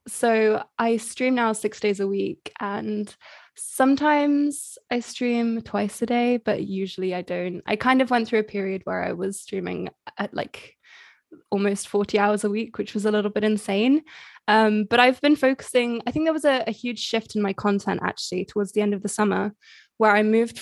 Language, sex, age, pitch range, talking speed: English, female, 20-39, 205-240 Hz, 200 wpm